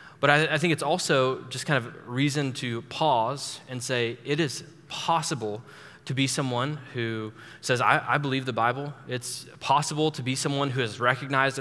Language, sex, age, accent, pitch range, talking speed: English, male, 20-39, American, 130-155 Hz, 180 wpm